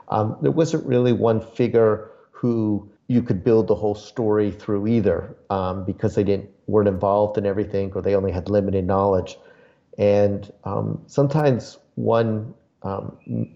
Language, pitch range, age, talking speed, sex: English, 100-120 Hz, 40-59, 150 wpm, male